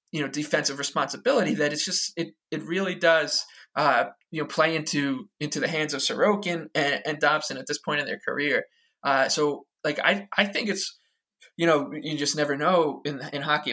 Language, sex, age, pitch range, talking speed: English, male, 20-39, 145-185 Hz, 200 wpm